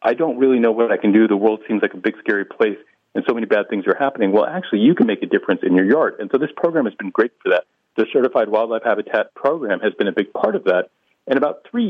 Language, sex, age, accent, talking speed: English, male, 40-59, American, 285 wpm